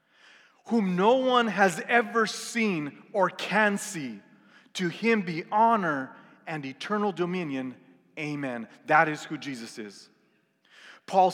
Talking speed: 120 wpm